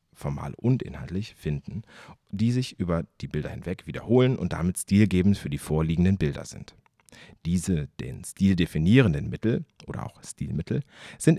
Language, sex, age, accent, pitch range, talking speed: German, male, 40-59, German, 80-110 Hz, 150 wpm